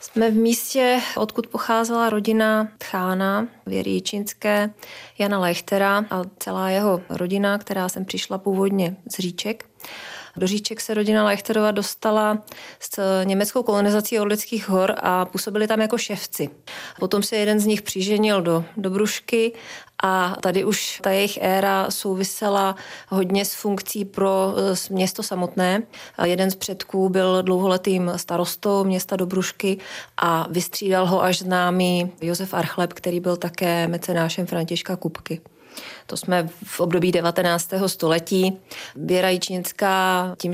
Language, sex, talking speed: Czech, female, 125 wpm